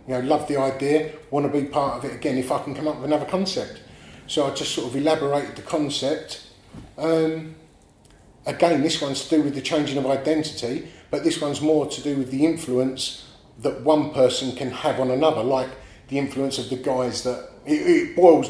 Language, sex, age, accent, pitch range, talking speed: English, male, 30-49, British, 125-145 Hz, 210 wpm